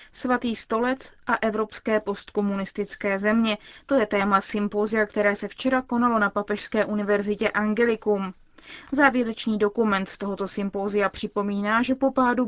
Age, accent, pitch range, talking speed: 20-39, native, 205-250 Hz, 130 wpm